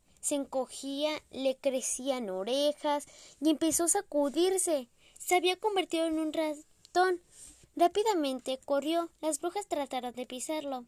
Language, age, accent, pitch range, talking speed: Spanish, 10-29, Mexican, 260-340 Hz, 120 wpm